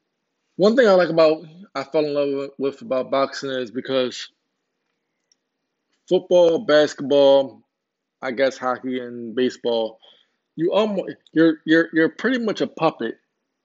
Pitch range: 130-155 Hz